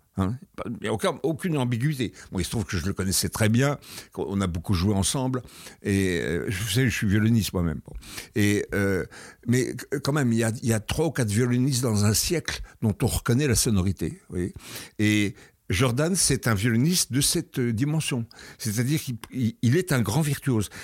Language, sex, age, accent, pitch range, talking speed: French, male, 60-79, French, 100-135 Hz, 190 wpm